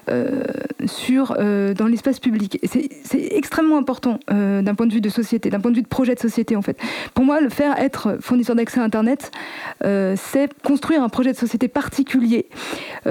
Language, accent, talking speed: French, French, 210 wpm